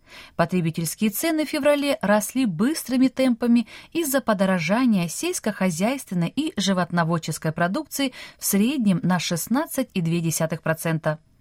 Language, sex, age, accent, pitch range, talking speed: Russian, female, 20-39, native, 175-260 Hz, 90 wpm